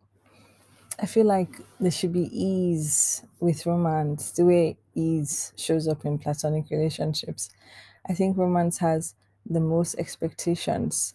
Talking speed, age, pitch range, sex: 130 wpm, 20-39, 145-185 Hz, female